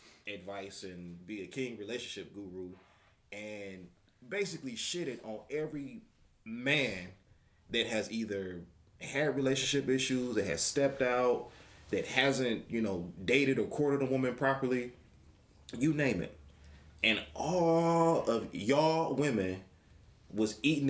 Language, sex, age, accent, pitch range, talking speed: English, male, 30-49, American, 85-120 Hz, 125 wpm